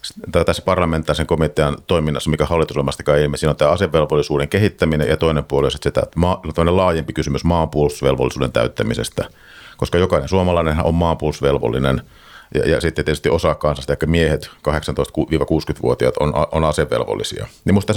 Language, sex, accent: Finnish, male, native